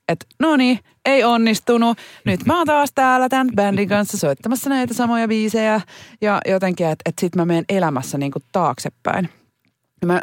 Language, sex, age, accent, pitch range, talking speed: Finnish, female, 30-49, native, 140-235 Hz, 170 wpm